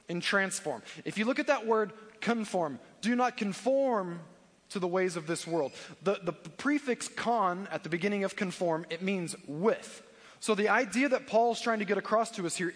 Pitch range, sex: 175-220 Hz, male